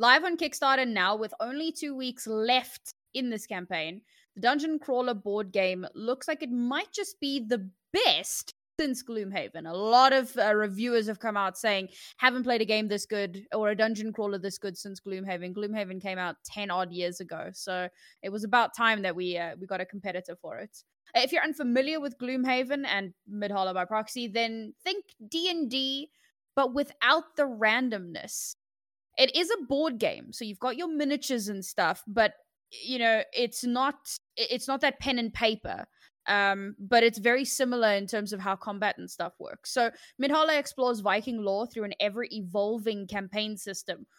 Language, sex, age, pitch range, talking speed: English, female, 10-29, 200-265 Hz, 180 wpm